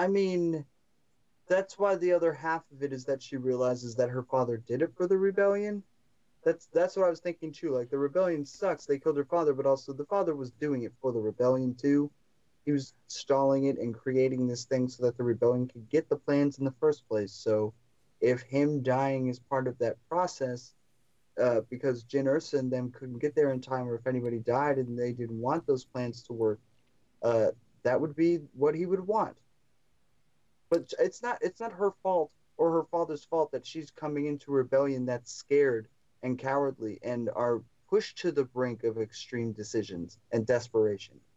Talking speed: 200 wpm